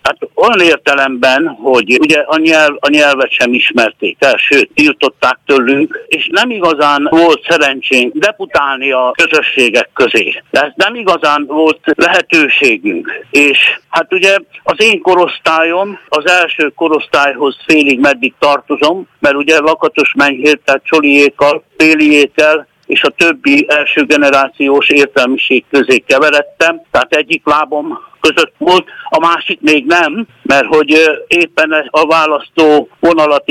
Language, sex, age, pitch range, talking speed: Hungarian, male, 60-79, 145-195 Hz, 125 wpm